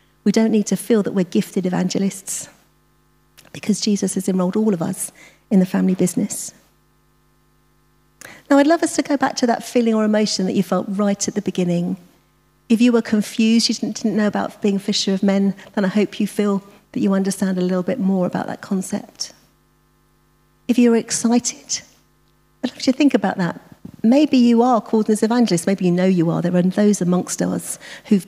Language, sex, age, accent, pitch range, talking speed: English, female, 40-59, British, 190-225 Hz, 195 wpm